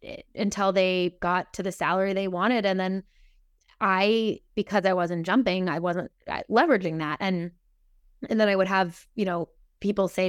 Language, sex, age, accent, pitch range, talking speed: English, female, 20-39, American, 175-210 Hz, 170 wpm